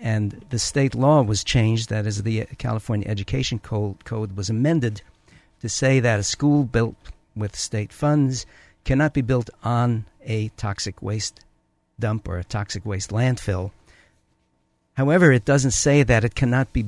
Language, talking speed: English, 160 wpm